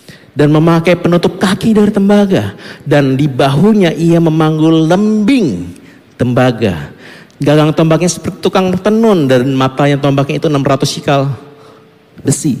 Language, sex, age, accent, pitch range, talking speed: Indonesian, male, 50-69, native, 145-210 Hz, 120 wpm